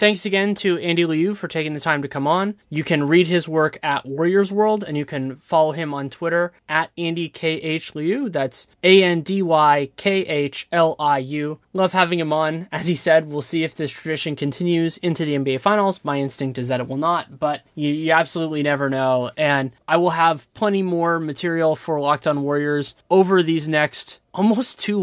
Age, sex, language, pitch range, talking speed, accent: 20-39, male, English, 135-165 Hz, 185 wpm, American